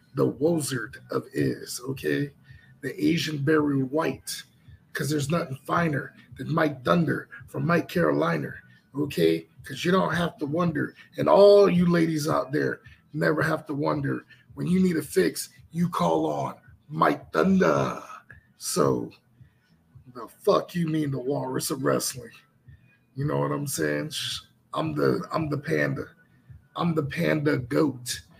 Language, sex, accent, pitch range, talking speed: English, male, American, 135-175 Hz, 150 wpm